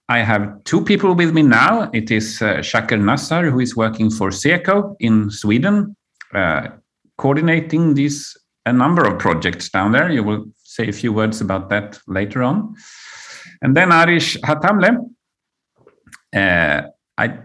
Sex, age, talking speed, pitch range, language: male, 50-69, 150 wpm, 110-165 Hz, Swedish